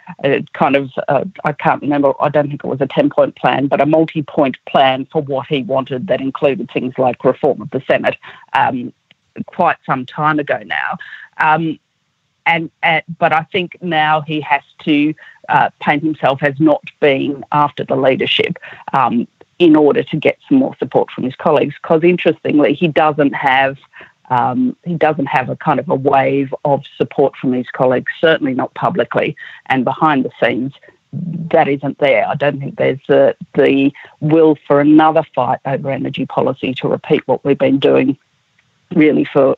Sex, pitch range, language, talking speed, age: female, 140-165 Hz, English, 175 wpm, 40-59